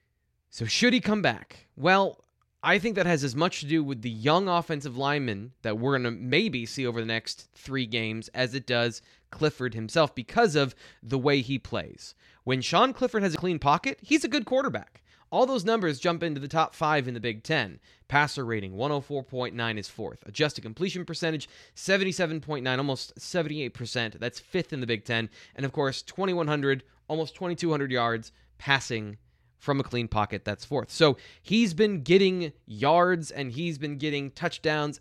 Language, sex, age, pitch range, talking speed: English, male, 20-39, 120-165 Hz, 180 wpm